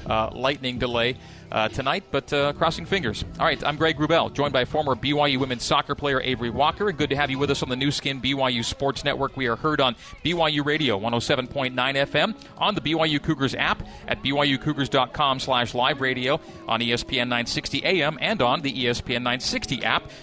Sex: male